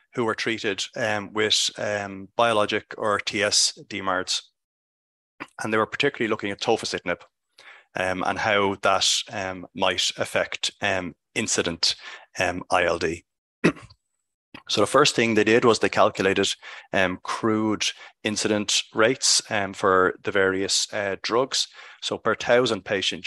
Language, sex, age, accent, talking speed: English, male, 30-49, Irish, 130 wpm